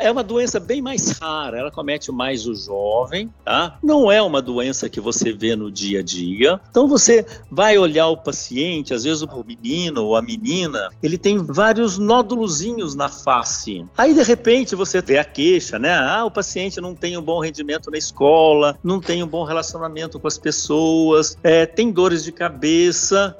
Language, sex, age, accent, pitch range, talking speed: Portuguese, male, 60-79, Brazilian, 155-215 Hz, 185 wpm